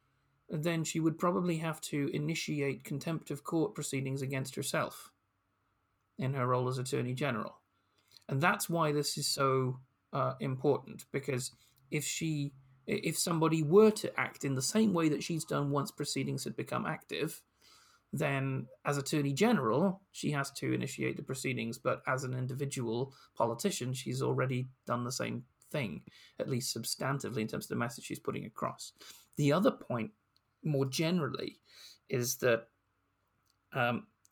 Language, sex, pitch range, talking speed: English, male, 120-155 Hz, 150 wpm